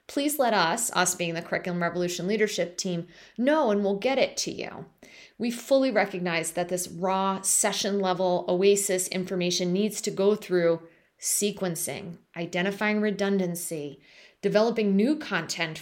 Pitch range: 180-225 Hz